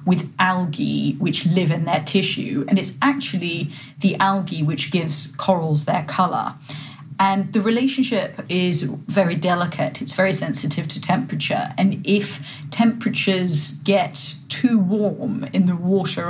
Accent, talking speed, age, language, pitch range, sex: British, 135 wpm, 40-59, English, 150-190 Hz, female